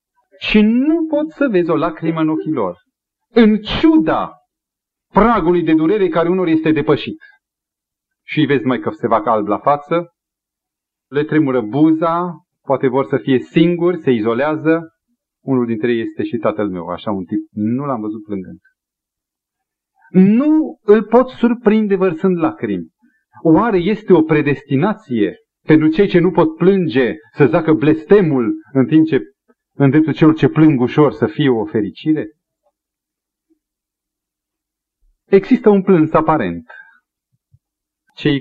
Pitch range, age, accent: 125-180 Hz, 40-59, native